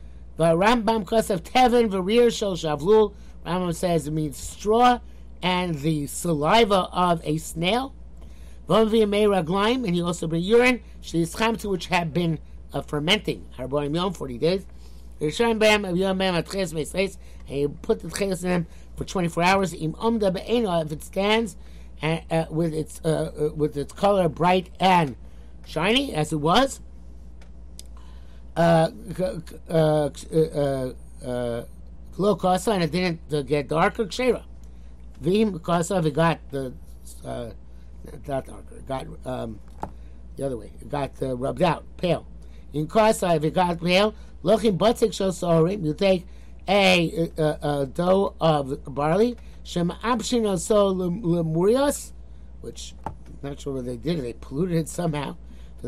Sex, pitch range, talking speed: male, 140-195 Hz, 110 wpm